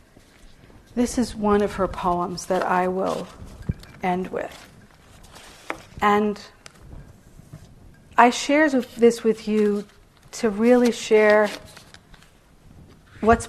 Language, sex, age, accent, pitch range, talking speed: English, female, 50-69, American, 195-240 Hz, 95 wpm